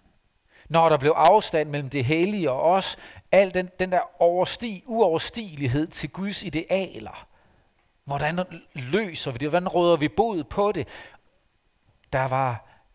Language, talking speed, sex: Danish, 140 wpm, male